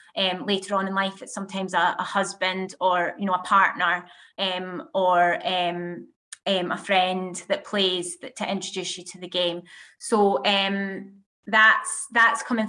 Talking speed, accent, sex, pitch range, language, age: 165 wpm, British, female, 195-225 Hz, English, 20-39